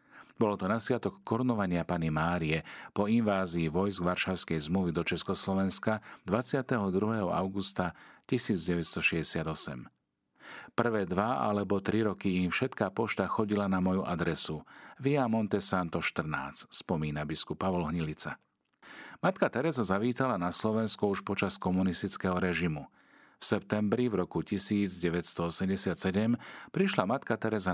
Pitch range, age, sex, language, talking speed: 85-110 Hz, 40-59, male, Slovak, 115 wpm